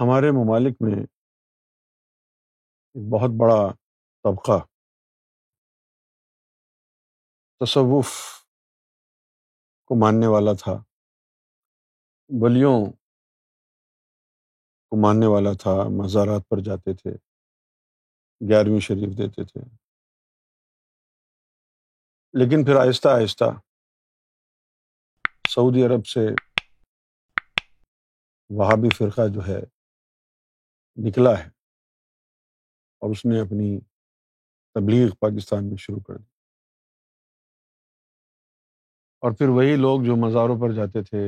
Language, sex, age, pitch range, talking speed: Urdu, male, 50-69, 100-120 Hz, 85 wpm